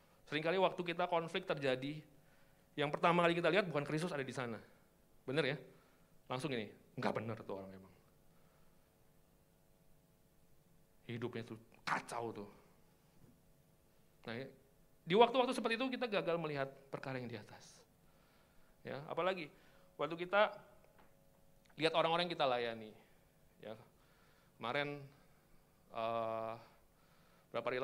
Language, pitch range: Indonesian, 120-155 Hz